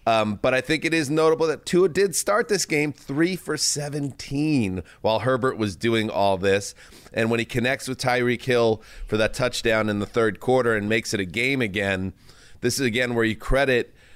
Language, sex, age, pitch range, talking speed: English, male, 30-49, 105-130 Hz, 195 wpm